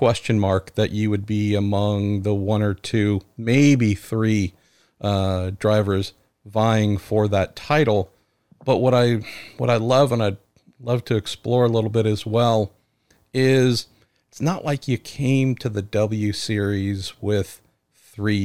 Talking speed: 155 wpm